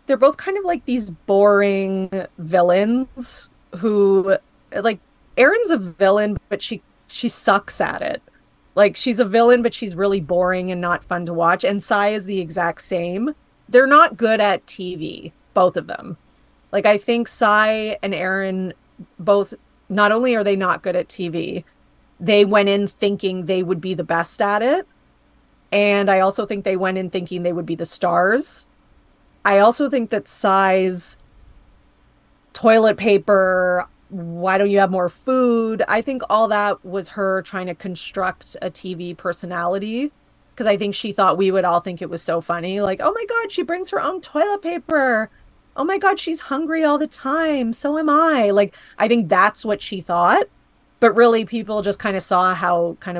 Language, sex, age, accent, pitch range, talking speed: English, female, 30-49, American, 185-230 Hz, 180 wpm